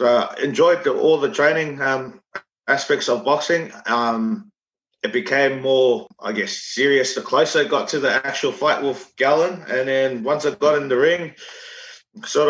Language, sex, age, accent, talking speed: English, male, 20-39, Australian, 180 wpm